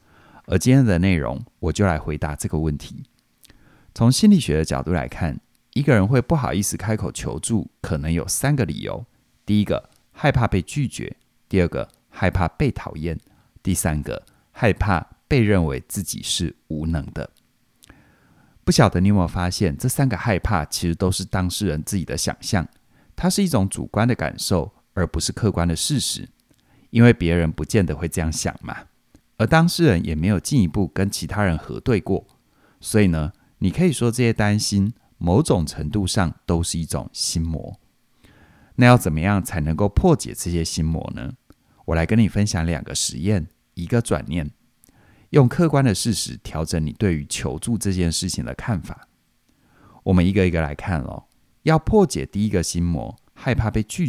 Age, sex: 30-49, male